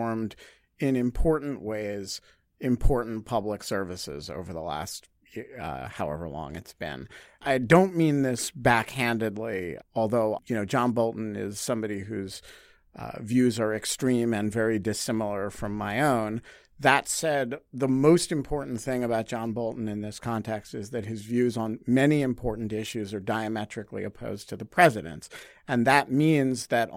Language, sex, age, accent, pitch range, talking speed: English, male, 50-69, American, 110-145 Hz, 150 wpm